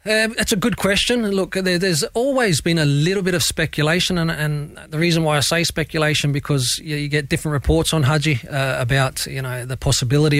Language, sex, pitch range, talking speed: English, male, 135-165 Hz, 215 wpm